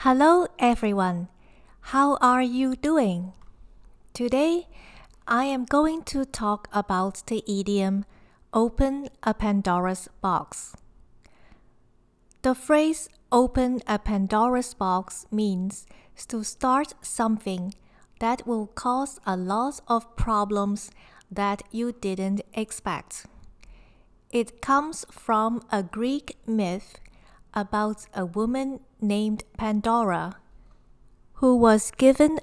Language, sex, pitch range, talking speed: English, female, 200-255 Hz, 100 wpm